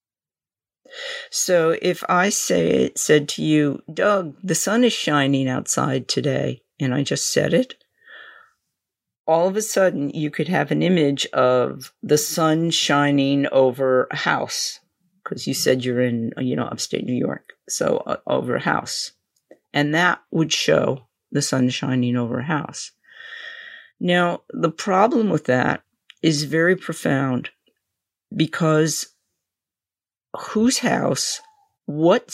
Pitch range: 140-175 Hz